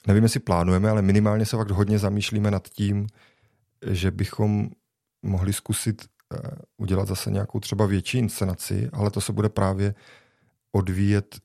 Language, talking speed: Czech, 140 wpm